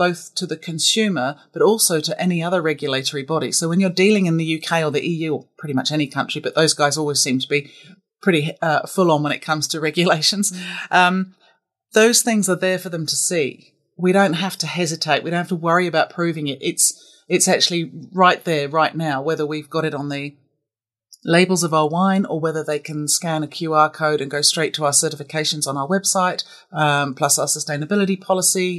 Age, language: 40-59, English